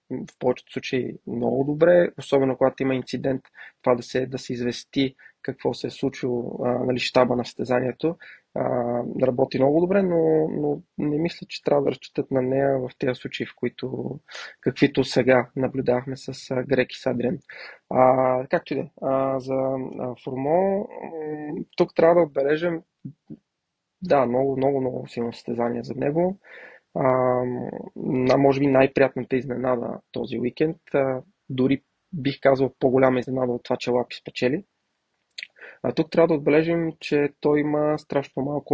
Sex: male